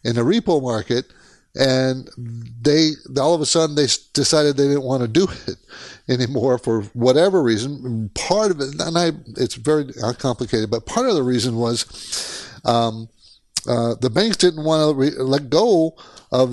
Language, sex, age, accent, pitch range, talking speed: English, male, 60-79, American, 120-150 Hz, 170 wpm